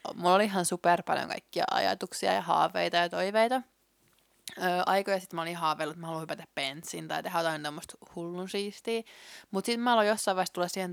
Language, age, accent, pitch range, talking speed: Finnish, 20-39, native, 165-205 Hz, 180 wpm